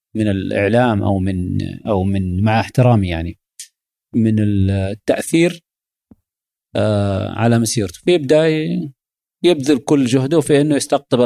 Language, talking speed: Arabic, 110 wpm